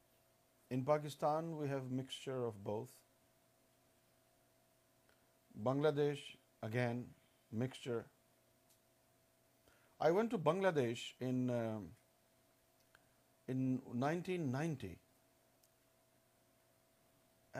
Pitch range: 90-145 Hz